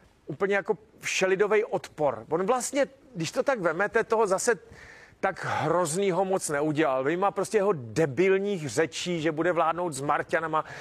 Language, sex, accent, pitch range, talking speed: Czech, male, native, 160-200 Hz, 145 wpm